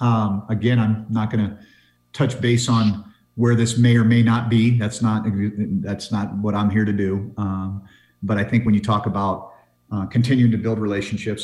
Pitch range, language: 95-110 Hz, English